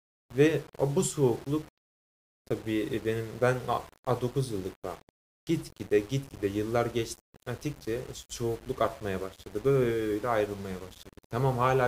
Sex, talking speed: male, 120 wpm